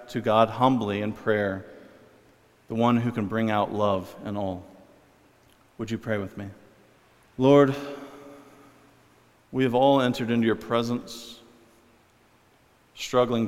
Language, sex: English, male